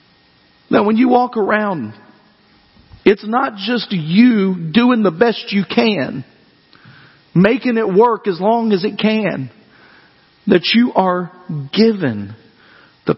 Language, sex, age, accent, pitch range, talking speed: English, male, 50-69, American, 195-265 Hz, 125 wpm